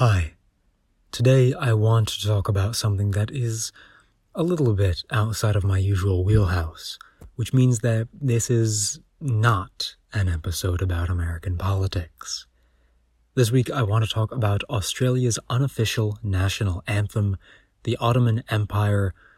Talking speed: 135 wpm